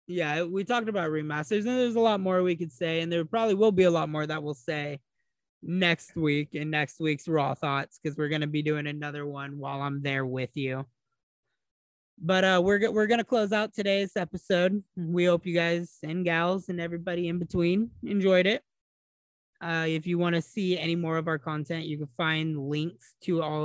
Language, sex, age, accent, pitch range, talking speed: English, male, 20-39, American, 155-190 Hz, 210 wpm